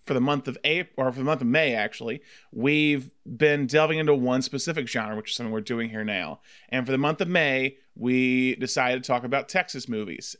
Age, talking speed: 30-49, 225 wpm